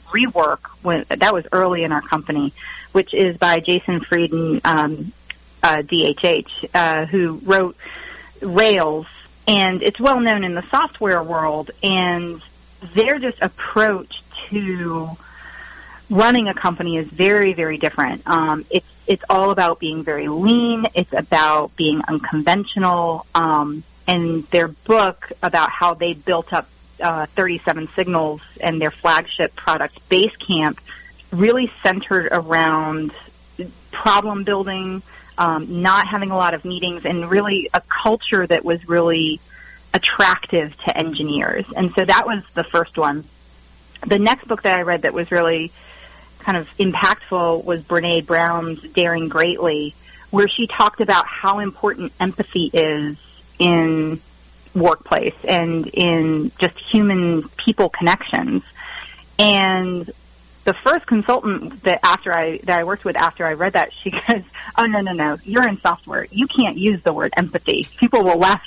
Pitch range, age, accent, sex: 165-205 Hz, 30-49, American, female